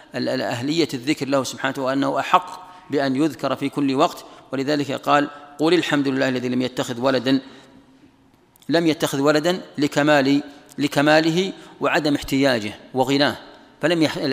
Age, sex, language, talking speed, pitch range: 40-59, male, Arabic, 120 wpm, 130-150 Hz